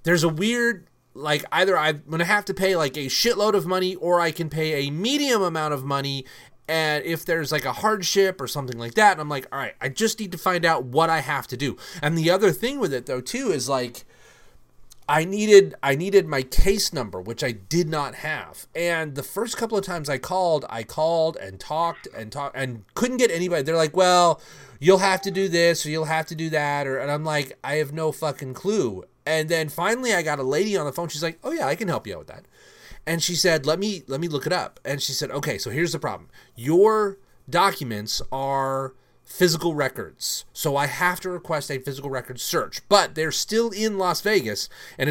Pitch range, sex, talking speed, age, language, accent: 140-180 Hz, male, 230 wpm, 30-49, English, American